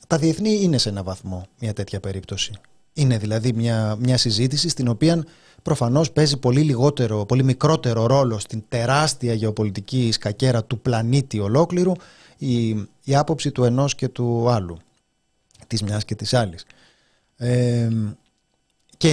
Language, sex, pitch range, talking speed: Greek, male, 110-140 Hz, 140 wpm